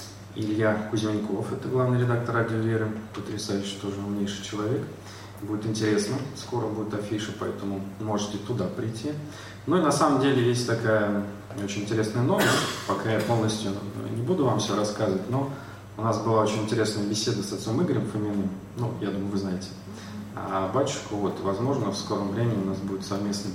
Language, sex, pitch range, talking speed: Russian, male, 100-115 Hz, 165 wpm